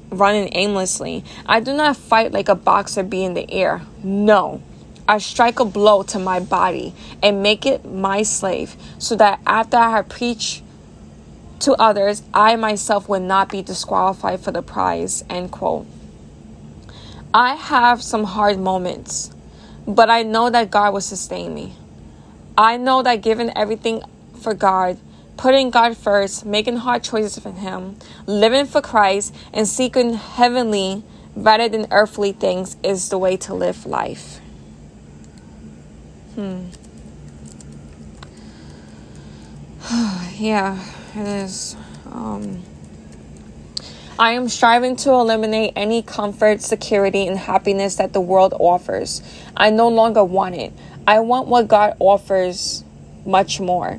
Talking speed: 135 wpm